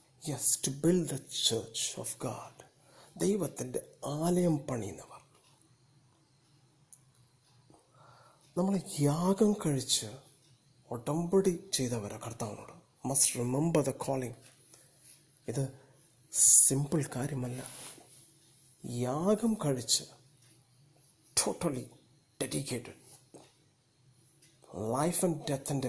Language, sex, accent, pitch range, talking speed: Malayalam, male, native, 125-145 Hz, 75 wpm